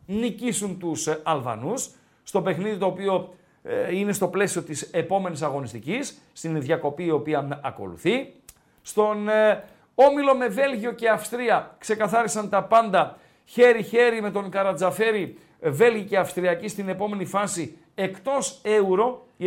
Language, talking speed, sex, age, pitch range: Greek, 130 wpm, male, 50-69, 165-215 Hz